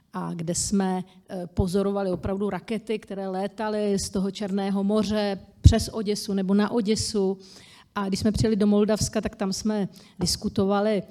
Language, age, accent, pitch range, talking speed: Czech, 40-59, native, 190-230 Hz, 145 wpm